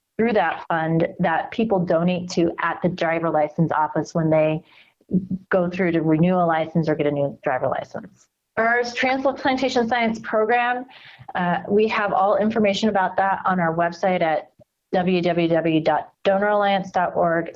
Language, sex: English, female